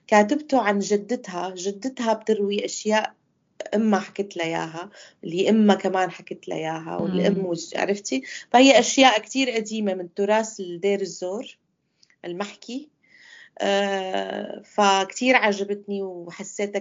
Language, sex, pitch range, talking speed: English, female, 185-230 Hz, 105 wpm